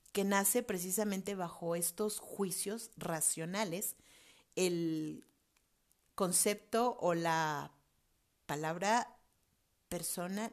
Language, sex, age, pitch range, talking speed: Spanish, female, 40-59, 180-235 Hz, 75 wpm